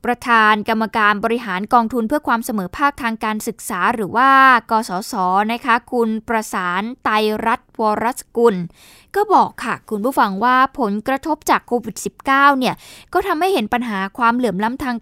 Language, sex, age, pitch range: Thai, female, 10-29, 210-265 Hz